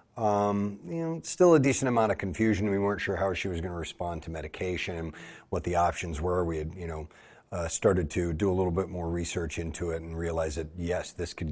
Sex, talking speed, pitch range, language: male, 240 wpm, 85-105 Hz, English